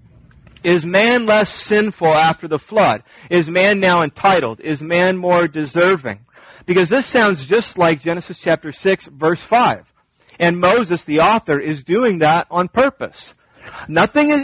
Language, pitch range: English, 170-215 Hz